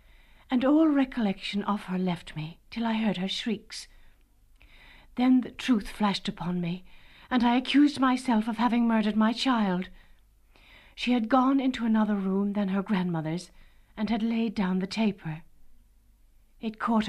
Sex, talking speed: female, 155 wpm